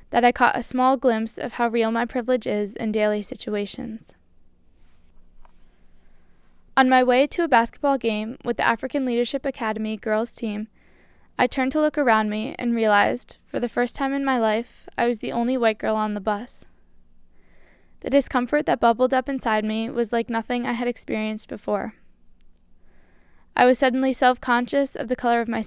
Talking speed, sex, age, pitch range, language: 180 wpm, female, 10-29, 210-250 Hz, English